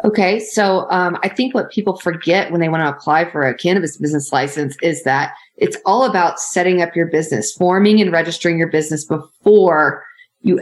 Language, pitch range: English, 160-185 Hz